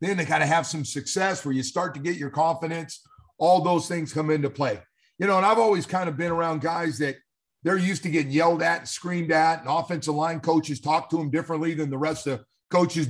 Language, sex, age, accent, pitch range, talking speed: English, male, 50-69, American, 120-155 Hz, 245 wpm